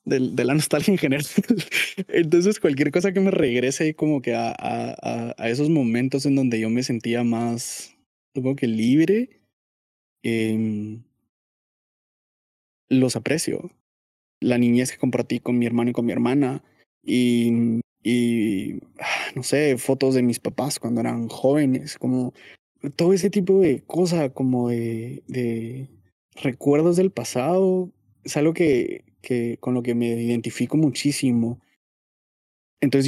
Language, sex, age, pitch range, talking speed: Spanish, male, 20-39, 120-155 Hz, 140 wpm